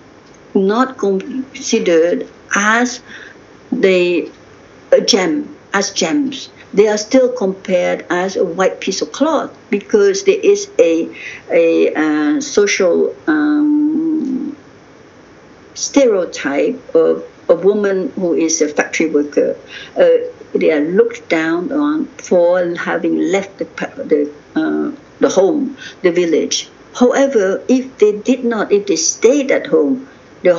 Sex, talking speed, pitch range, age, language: female, 120 wpm, 195-310 Hz, 60-79, English